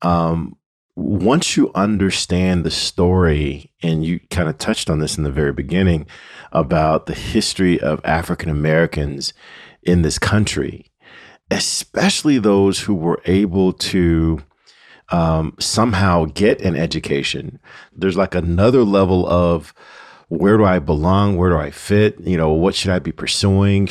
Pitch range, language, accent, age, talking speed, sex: 80-100 Hz, English, American, 40-59, 145 wpm, male